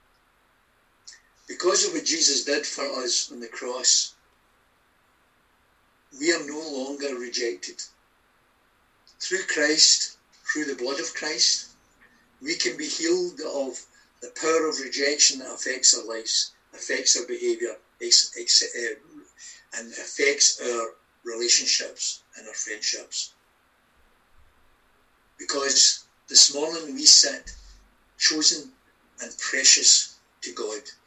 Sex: male